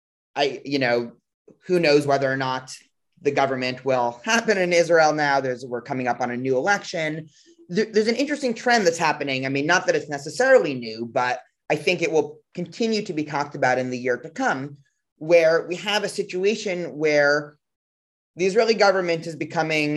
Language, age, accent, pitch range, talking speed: English, 20-39, American, 130-170 Hz, 185 wpm